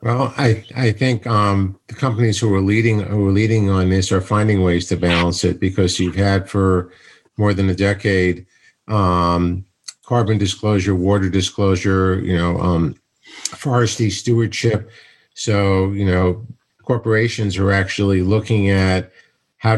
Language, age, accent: English, 50-69, American